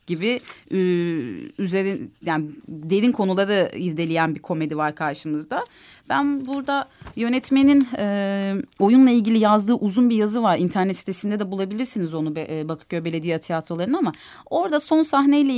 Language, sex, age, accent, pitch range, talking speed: Turkish, female, 30-49, native, 175-245 Hz, 125 wpm